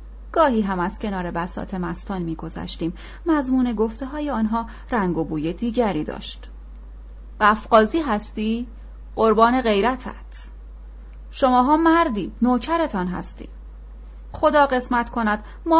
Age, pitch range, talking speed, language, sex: 30-49, 185-255 Hz, 110 wpm, Persian, female